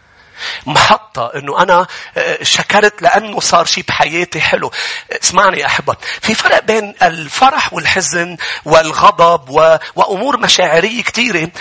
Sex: male